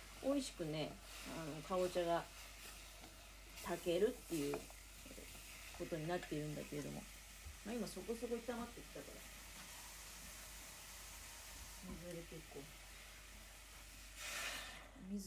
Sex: female